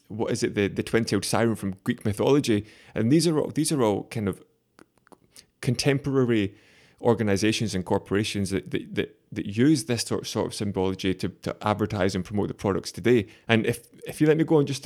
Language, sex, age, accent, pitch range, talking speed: English, male, 20-39, British, 100-120 Hz, 210 wpm